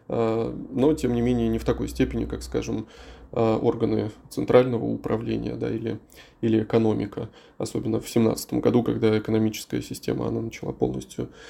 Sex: male